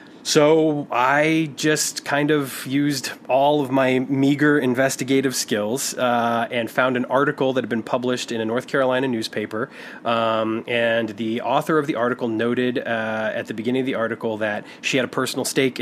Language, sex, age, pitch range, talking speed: English, male, 30-49, 115-135 Hz, 180 wpm